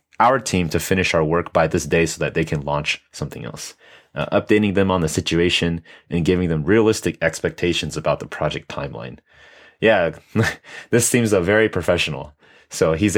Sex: male